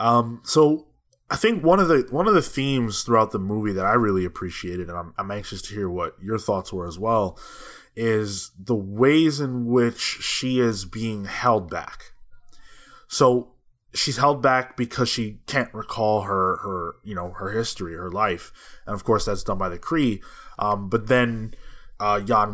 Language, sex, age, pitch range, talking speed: English, male, 20-39, 105-130 Hz, 185 wpm